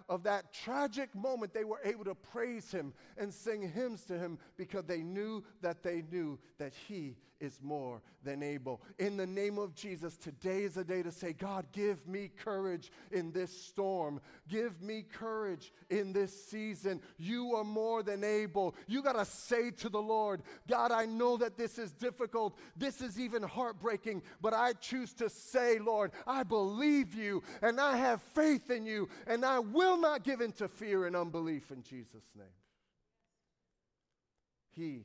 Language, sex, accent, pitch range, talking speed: English, male, American, 135-215 Hz, 175 wpm